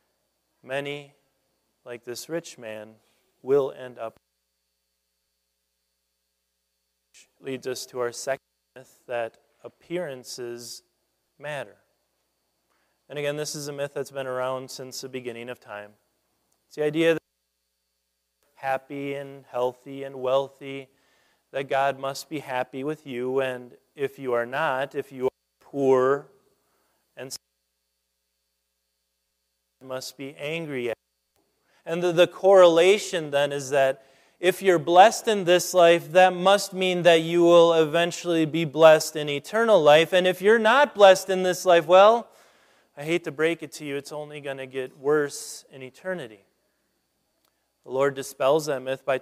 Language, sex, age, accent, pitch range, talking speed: English, male, 30-49, American, 125-165 Hz, 145 wpm